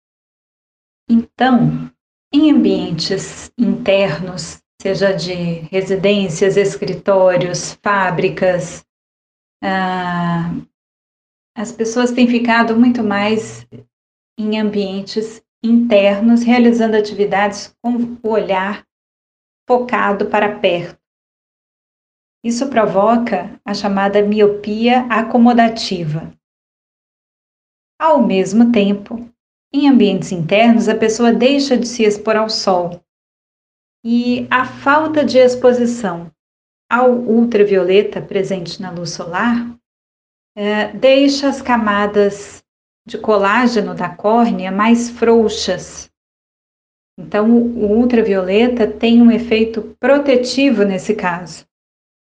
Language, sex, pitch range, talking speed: Portuguese, female, 190-235 Hz, 90 wpm